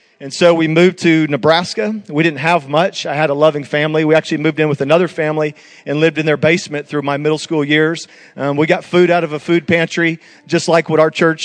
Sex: male